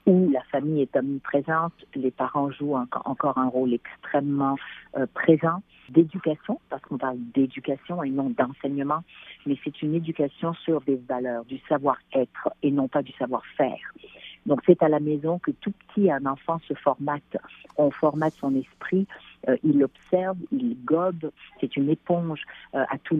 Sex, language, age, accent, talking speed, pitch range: female, French, 50-69, French, 165 wpm, 135-170 Hz